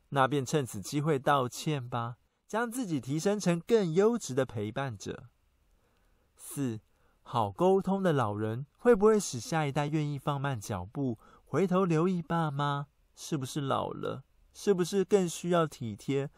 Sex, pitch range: male, 125-180 Hz